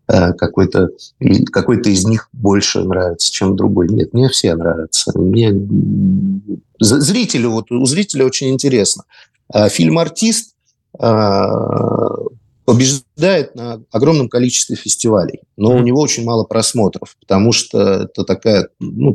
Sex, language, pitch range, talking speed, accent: male, Russian, 100-130 Hz, 105 wpm, native